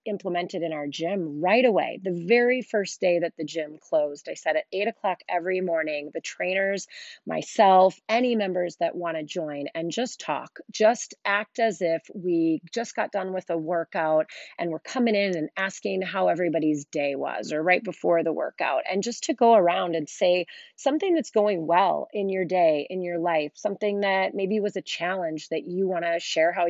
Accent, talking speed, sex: American, 200 wpm, female